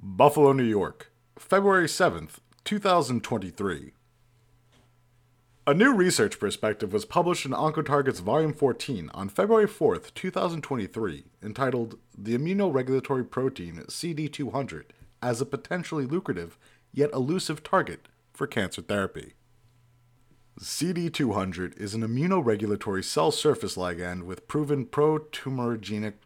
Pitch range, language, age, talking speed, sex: 105-145 Hz, English, 30-49, 105 wpm, male